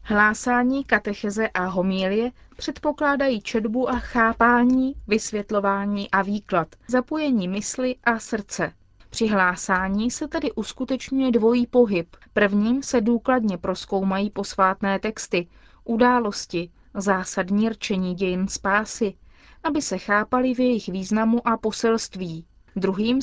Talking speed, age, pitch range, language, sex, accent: 110 wpm, 30-49, 200-245 Hz, Czech, female, native